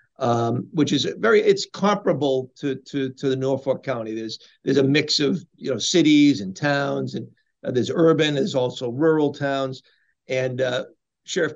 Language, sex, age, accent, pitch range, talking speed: English, male, 50-69, American, 130-150 Hz, 170 wpm